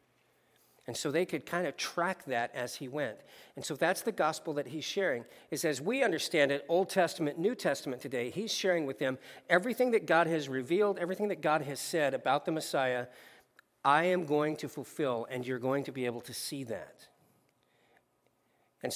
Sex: male